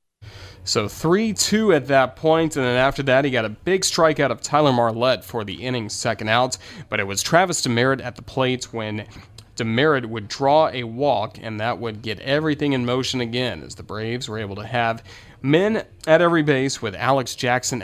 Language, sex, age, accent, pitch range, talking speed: English, male, 30-49, American, 110-145 Hz, 195 wpm